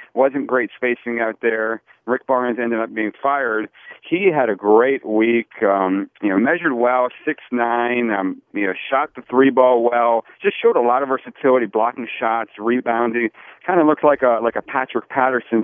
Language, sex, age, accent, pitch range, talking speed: English, male, 40-59, American, 115-145 Hz, 185 wpm